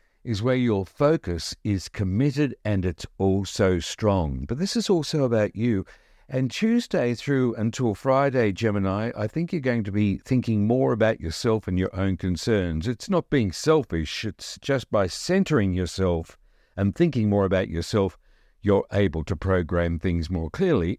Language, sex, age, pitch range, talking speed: English, male, 60-79, 90-130 Hz, 165 wpm